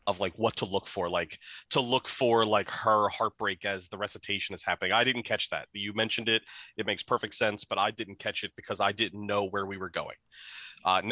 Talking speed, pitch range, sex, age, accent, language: 230 wpm, 105-125 Hz, male, 30-49, American, English